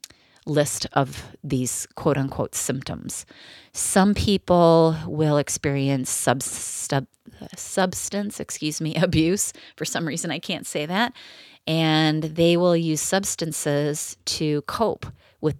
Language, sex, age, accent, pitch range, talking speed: English, female, 30-49, American, 140-170 Hz, 110 wpm